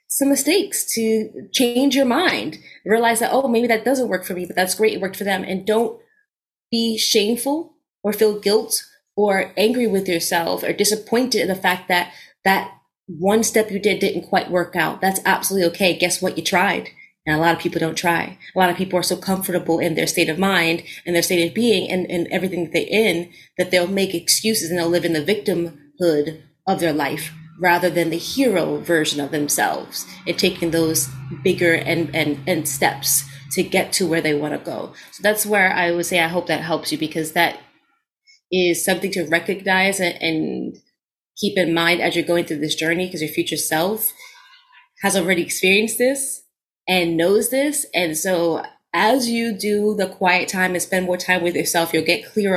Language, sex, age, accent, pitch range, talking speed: English, female, 30-49, American, 170-210 Hz, 200 wpm